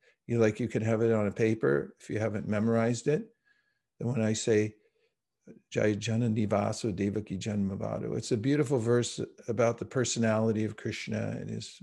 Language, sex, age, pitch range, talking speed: English, male, 50-69, 110-135 Hz, 155 wpm